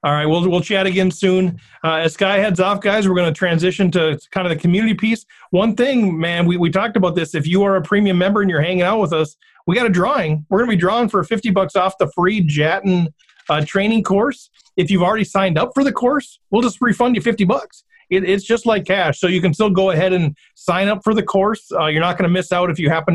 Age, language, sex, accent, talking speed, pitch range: 40-59, English, male, American, 265 wpm, 165-195 Hz